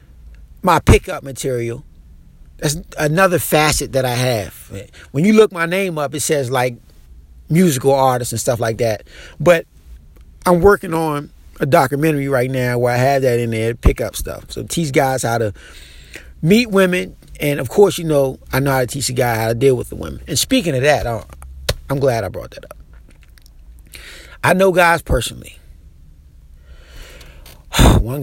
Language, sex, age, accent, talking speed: English, male, 30-49, American, 170 wpm